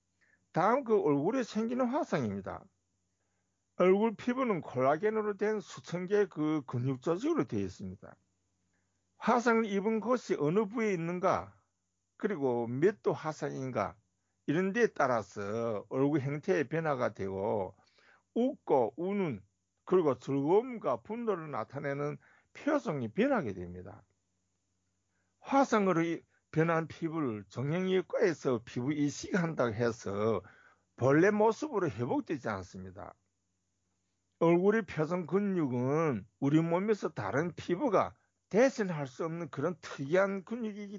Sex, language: male, Korean